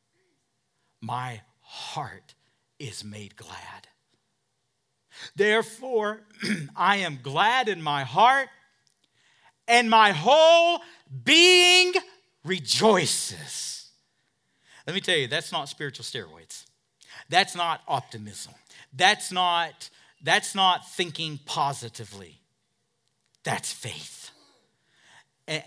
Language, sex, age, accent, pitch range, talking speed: English, male, 50-69, American, 120-160 Hz, 85 wpm